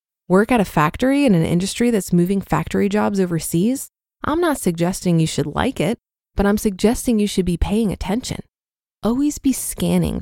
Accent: American